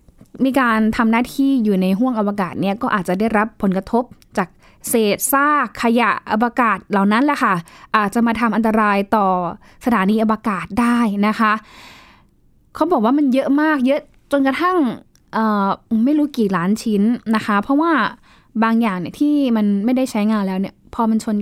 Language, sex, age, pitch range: Thai, female, 10-29, 200-240 Hz